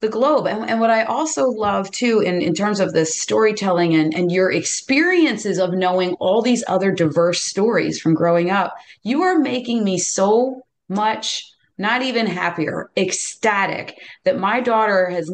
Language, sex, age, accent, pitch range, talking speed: English, female, 30-49, American, 180-250 Hz, 170 wpm